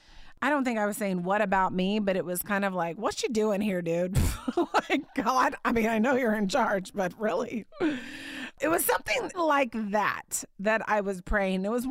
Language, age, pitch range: English, 30-49, 195-260 Hz